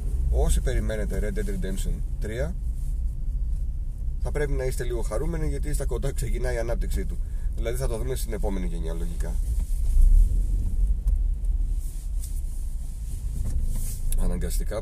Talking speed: 115 wpm